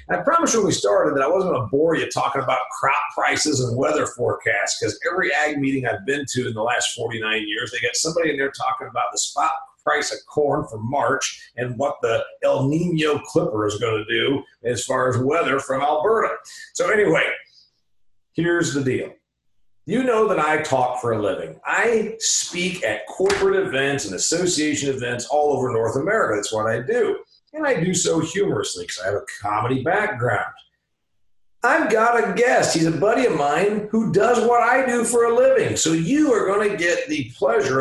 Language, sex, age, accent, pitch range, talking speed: English, male, 40-59, American, 140-225 Hz, 200 wpm